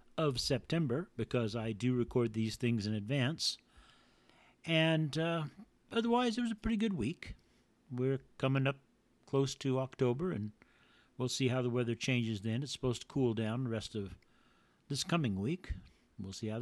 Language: English